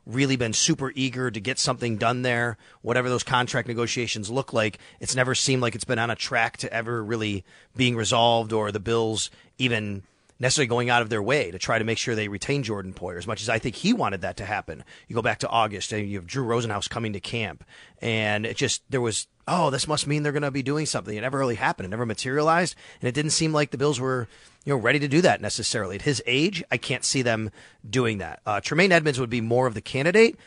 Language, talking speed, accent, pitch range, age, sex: English, 250 wpm, American, 115-145 Hz, 30-49, male